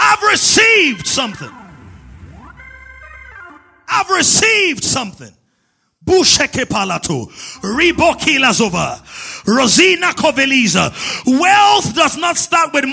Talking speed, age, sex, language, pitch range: 55 wpm, 30-49, male, English, 205-310 Hz